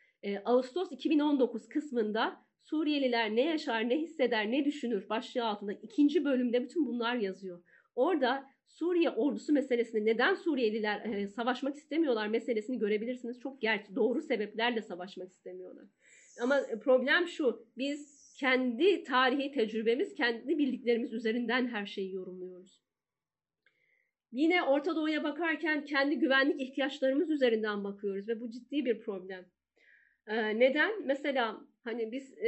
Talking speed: 120 wpm